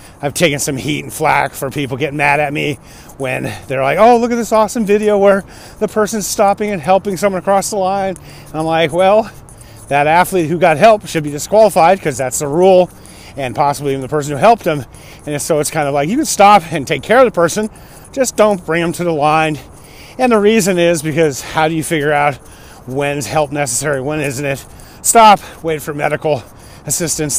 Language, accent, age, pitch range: English, American, 30-49, 145-195 Hz